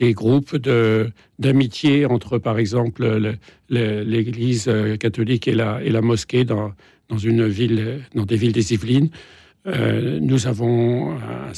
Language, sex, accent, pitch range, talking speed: French, male, French, 115-135 Hz, 150 wpm